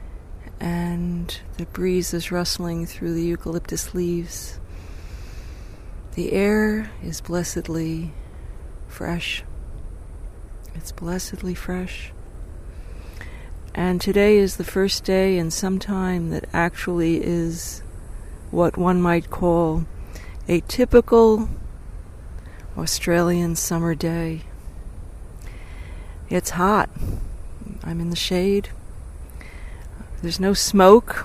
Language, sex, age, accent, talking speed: English, female, 40-59, American, 90 wpm